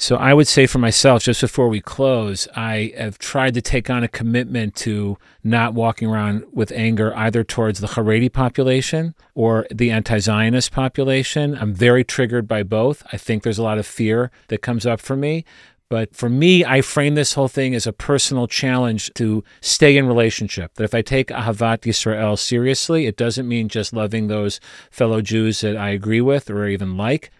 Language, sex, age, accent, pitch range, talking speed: English, male, 40-59, American, 110-125 Hz, 195 wpm